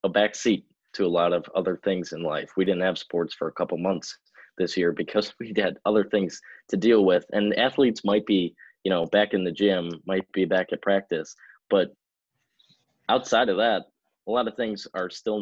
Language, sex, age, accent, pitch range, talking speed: English, male, 20-39, American, 85-105 Hz, 210 wpm